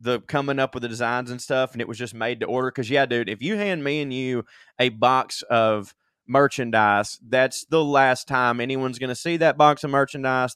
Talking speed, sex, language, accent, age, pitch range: 225 wpm, male, English, American, 20-39, 120-150 Hz